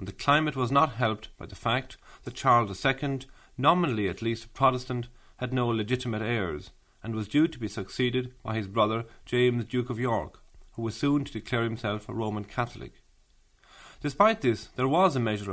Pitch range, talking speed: 105-130 Hz, 190 wpm